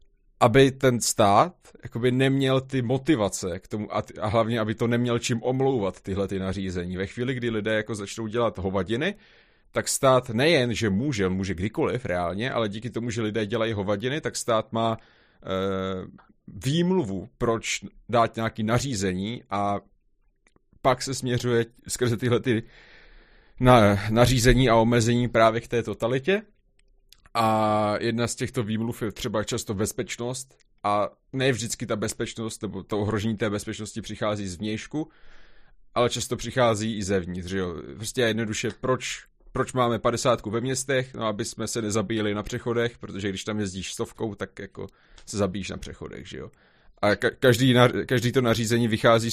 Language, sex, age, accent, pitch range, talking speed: Czech, male, 30-49, native, 105-125 Hz, 150 wpm